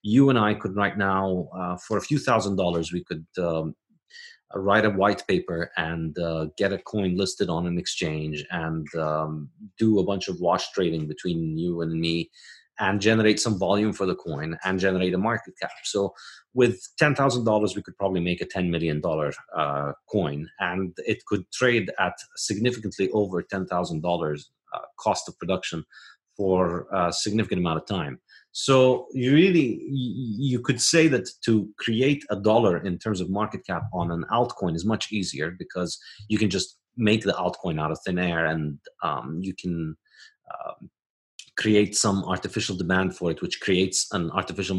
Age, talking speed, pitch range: 30-49, 175 wpm, 90-110 Hz